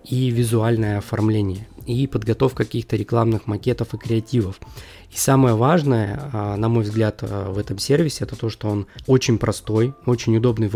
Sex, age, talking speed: male, 20-39, 155 wpm